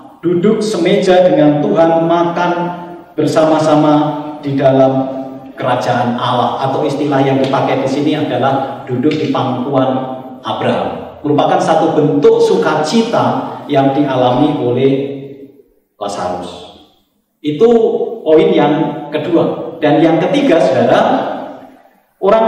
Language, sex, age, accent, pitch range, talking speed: Indonesian, male, 40-59, native, 145-205 Hz, 100 wpm